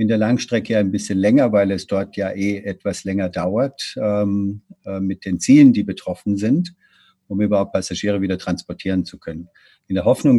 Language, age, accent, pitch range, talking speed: German, 50-69, German, 100-115 Hz, 185 wpm